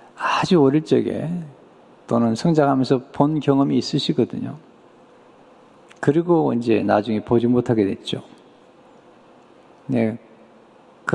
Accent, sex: Korean, male